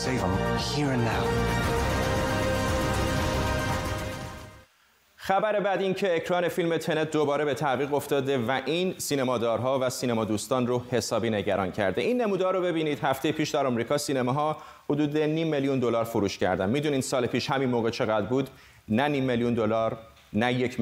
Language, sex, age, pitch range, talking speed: Persian, male, 30-49, 115-150 Hz, 140 wpm